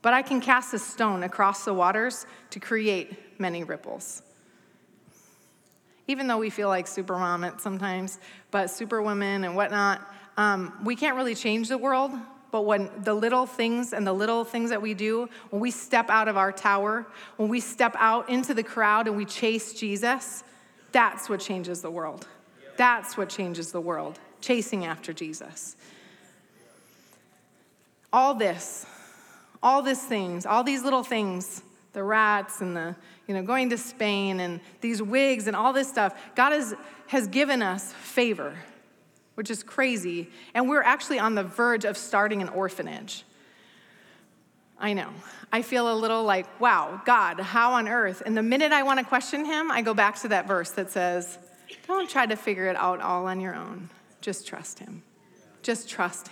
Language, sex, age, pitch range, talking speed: English, female, 30-49, 195-240 Hz, 170 wpm